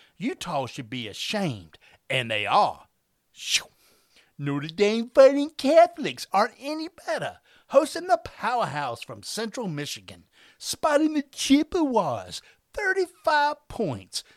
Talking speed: 110 wpm